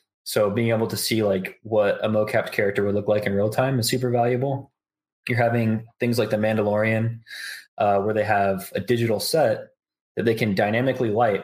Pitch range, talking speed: 100-115 Hz, 200 wpm